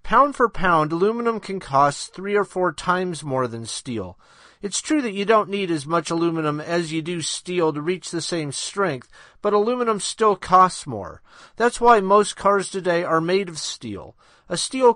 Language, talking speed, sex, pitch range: English, 190 wpm, male, 150-200 Hz